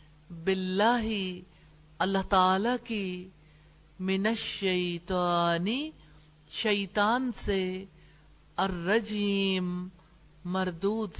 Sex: female